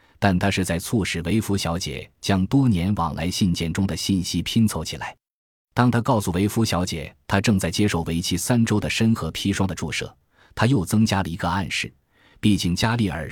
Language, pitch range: Chinese, 85-115 Hz